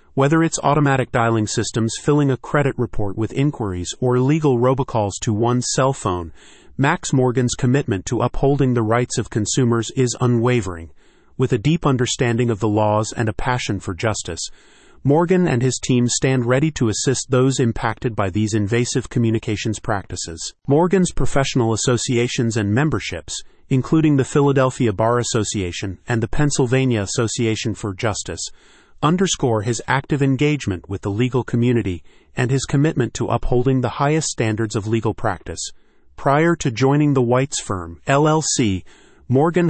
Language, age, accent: English, 30-49, American